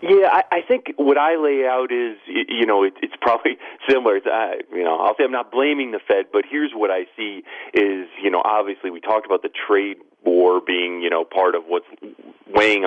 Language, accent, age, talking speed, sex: English, American, 40-59, 210 wpm, male